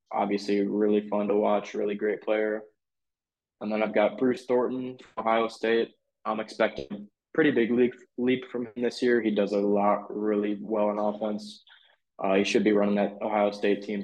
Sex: male